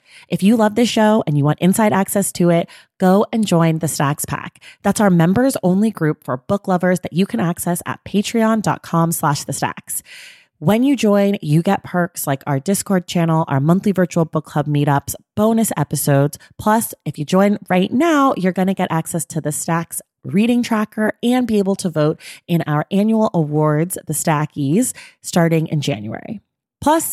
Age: 30-49